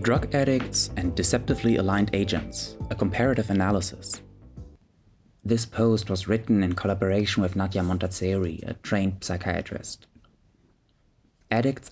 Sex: male